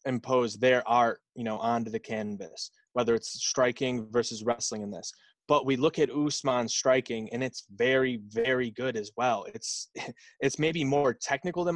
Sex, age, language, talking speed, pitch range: male, 20-39, English, 185 wpm, 115-130 Hz